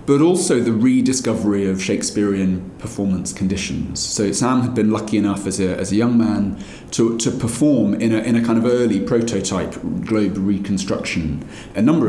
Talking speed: 175 wpm